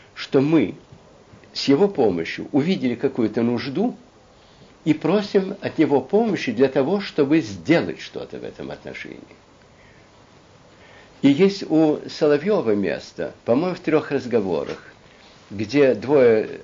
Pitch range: 135-195 Hz